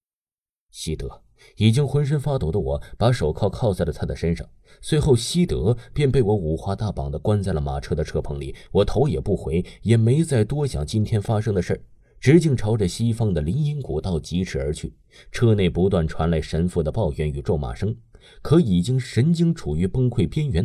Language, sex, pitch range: Chinese, male, 80-125 Hz